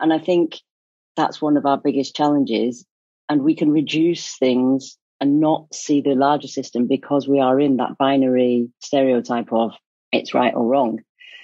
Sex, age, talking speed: female, 40-59, 170 wpm